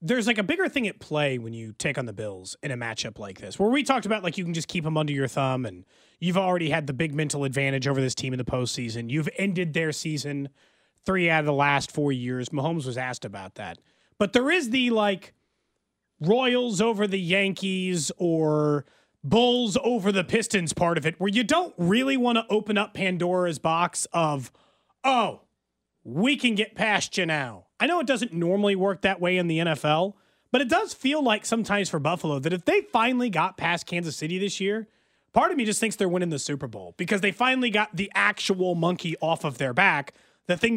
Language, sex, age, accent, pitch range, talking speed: English, male, 30-49, American, 155-225 Hz, 220 wpm